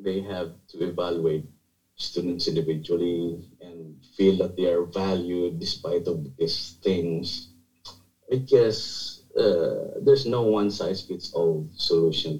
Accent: Filipino